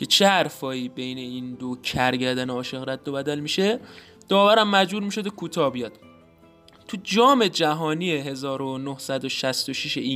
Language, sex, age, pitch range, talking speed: Persian, male, 20-39, 130-180 Hz, 110 wpm